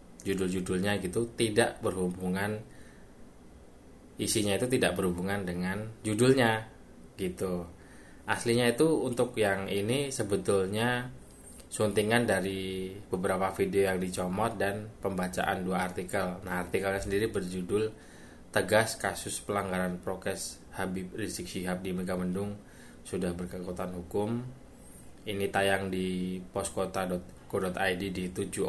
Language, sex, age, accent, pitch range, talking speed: Indonesian, male, 20-39, native, 90-105 Hz, 100 wpm